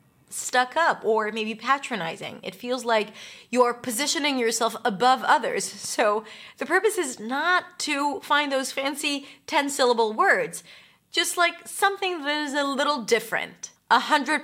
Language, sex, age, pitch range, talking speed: English, female, 30-49, 205-270 Hz, 140 wpm